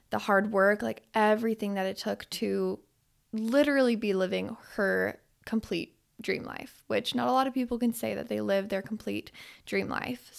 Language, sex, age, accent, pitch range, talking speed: English, female, 10-29, American, 195-240 Hz, 180 wpm